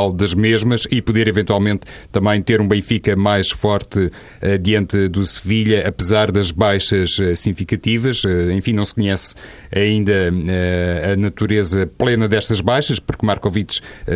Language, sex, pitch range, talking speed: Portuguese, male, 95-110 Hz, 125 wpm